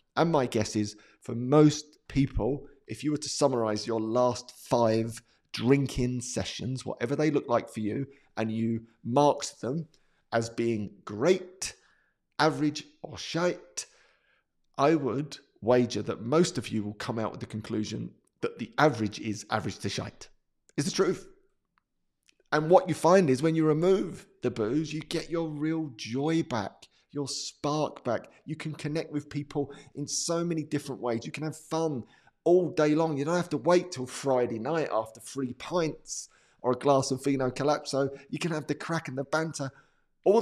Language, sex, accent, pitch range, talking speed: English, male, British, 115-155 Hz, 175 wpm